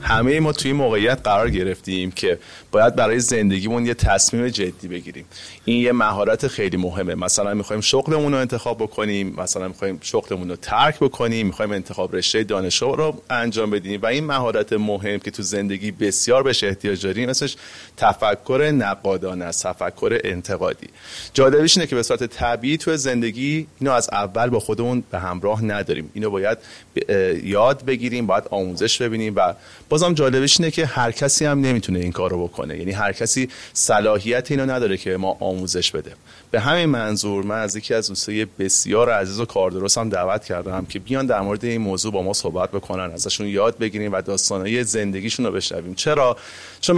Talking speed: 170 wpm